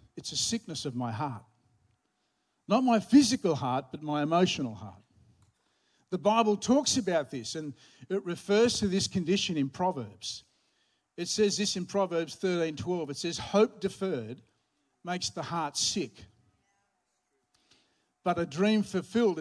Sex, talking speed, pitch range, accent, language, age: male, 140 wpm, 135-195 Hz, Australian, English, 50-69